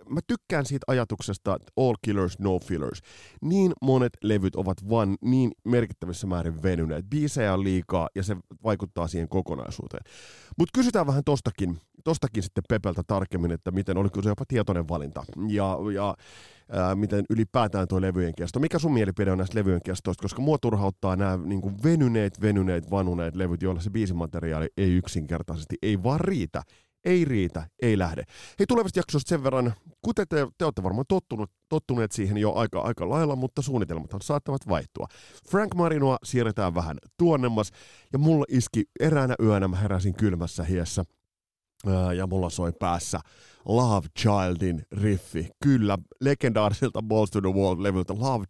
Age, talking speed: 30-49, 155 wpm